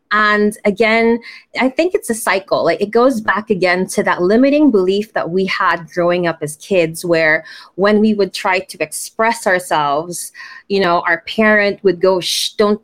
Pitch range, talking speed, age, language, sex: 180-215 Hz, 180 wpm, 20-39, English, female